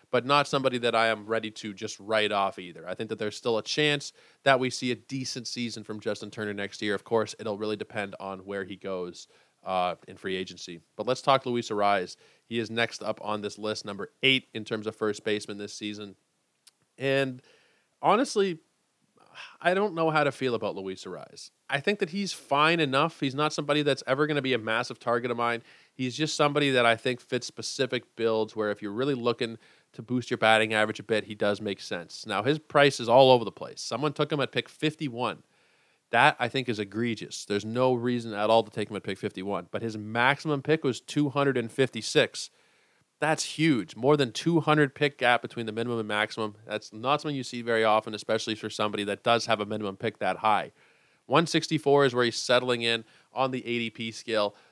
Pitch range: 105-135 Hz